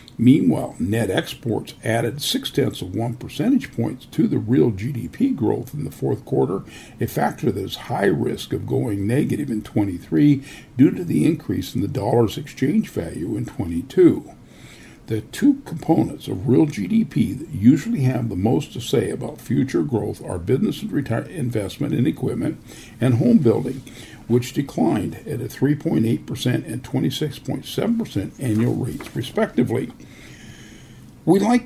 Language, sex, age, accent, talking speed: English, male, 50-69, American, 155 wpm